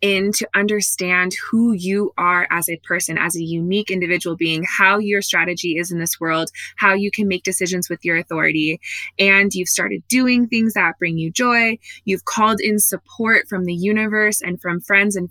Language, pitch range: English, 175-210 Hz